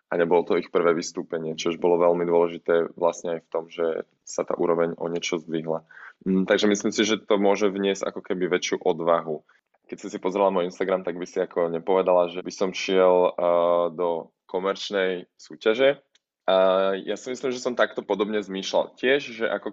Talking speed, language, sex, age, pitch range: 190 wpm, Slovak, male, 20-39, 90-105 Hz